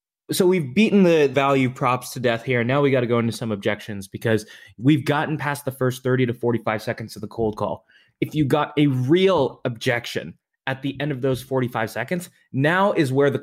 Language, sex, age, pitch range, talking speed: English, male, 20-39, 115-145 Hz, 215 wpm